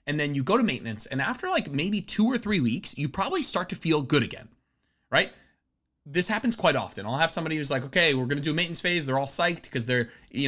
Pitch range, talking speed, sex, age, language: 125-185 Hz, 245 wpm, male, 20-39, English